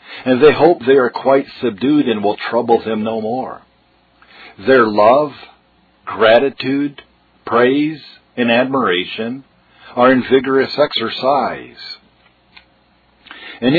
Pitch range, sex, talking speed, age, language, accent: 115-140 Hz, male, 105 wpm, 50-69, English, American